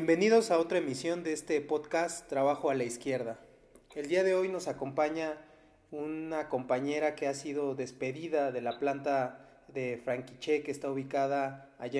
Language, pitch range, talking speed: Spanish, 130-155 Hz, 160 wpm